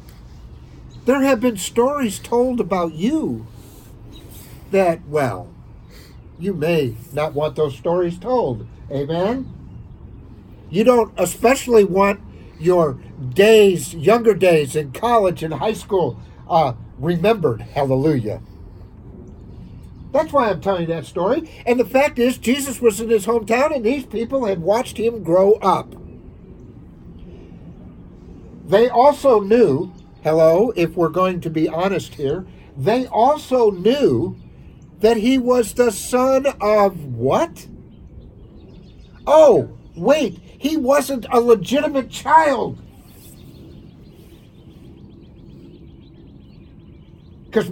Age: 60-79